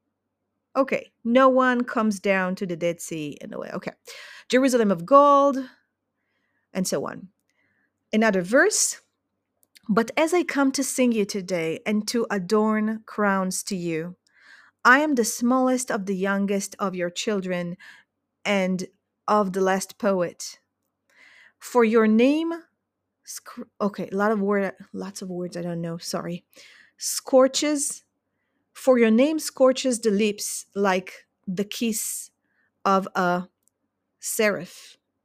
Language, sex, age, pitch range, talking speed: Hebrew, female, 30-49, 190-250 Hz, 135 wpm